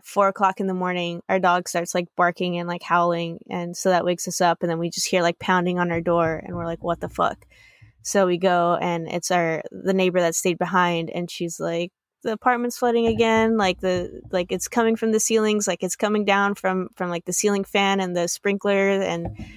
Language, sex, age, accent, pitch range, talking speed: English, female, 20-39, American, 175-200 Hz, 230 wpm